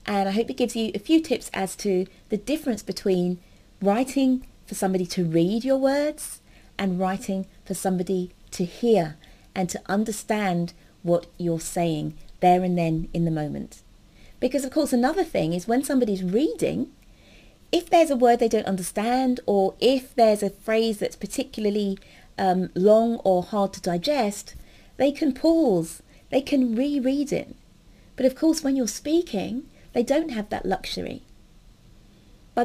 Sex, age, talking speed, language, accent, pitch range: female, 30-49, 160 wpm, English, British, 190-260 Hz